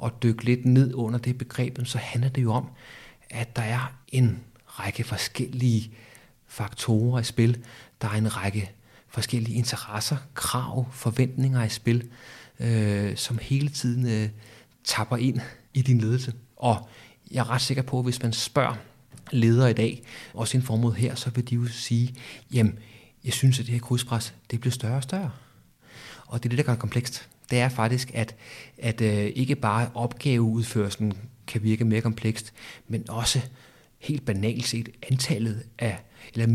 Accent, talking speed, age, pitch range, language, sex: native, 170 wpm, 30-49, 115-130 Hz, Danish, male